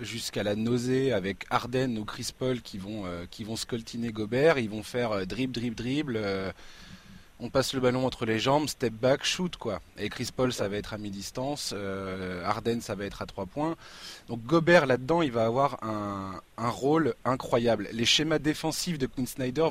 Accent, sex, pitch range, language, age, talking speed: French, male, 115-155 Hz, French, 20-39, 200 wpm